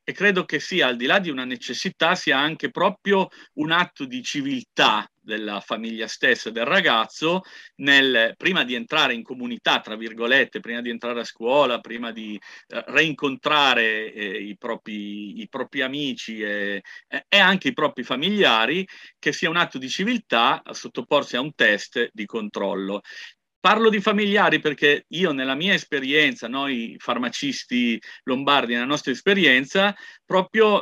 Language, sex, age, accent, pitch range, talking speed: Italian, male, 40-59, native, 120-190 Hz, 155 wpm